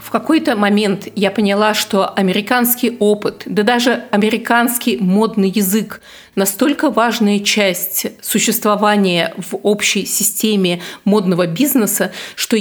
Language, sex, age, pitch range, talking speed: Russian, female, 30-49, 185-220 Hz, 110 wpm